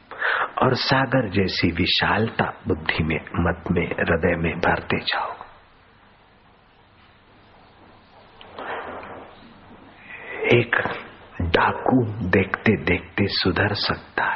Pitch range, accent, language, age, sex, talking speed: 95-115 Hz, native, Hindi, 50-69, male, 75 wpm